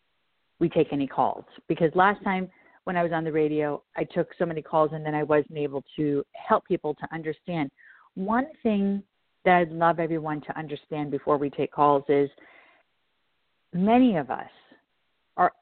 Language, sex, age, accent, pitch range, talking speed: English, female, 50-69, American, 155-215 Hz, 175 wpm